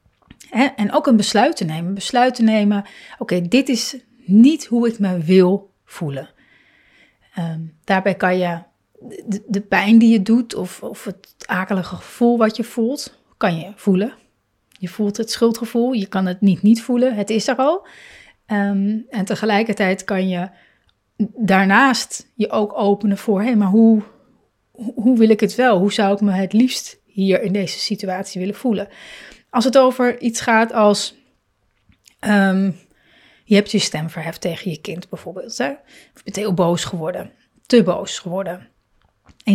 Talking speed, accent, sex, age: 165 wpm, Dutch, female, 30-49